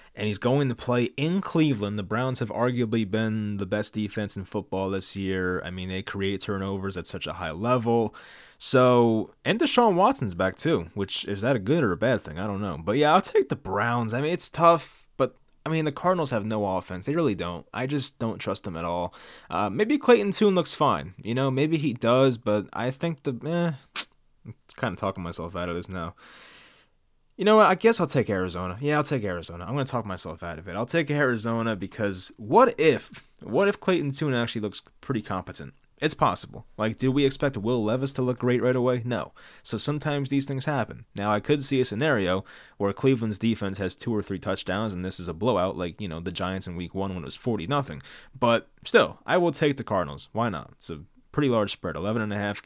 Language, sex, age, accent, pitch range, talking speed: English, male, 20-39, American, 95-140 Hz, 230 wpm